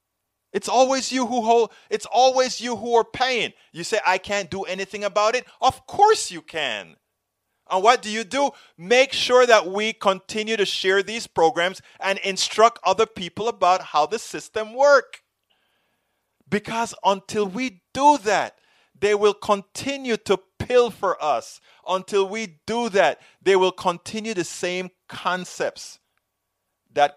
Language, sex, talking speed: English, male, 150 wpm